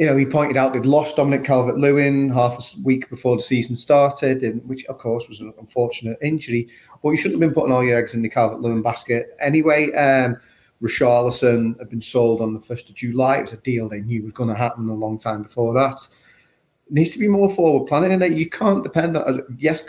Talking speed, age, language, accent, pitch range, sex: 230 wpm, 30-49, English, British, 115-145 Hz, male